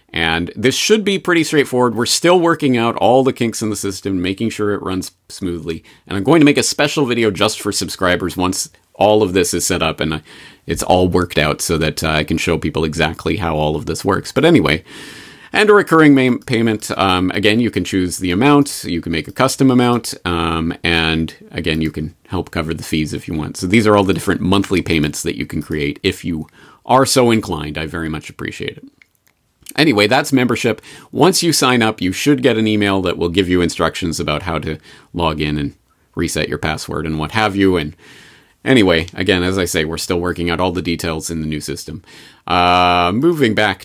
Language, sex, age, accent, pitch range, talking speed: English, male, 30-49, American, 85-110 Hz, 220 wpm